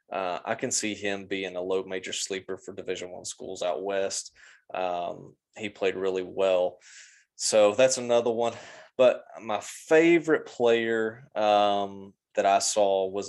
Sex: male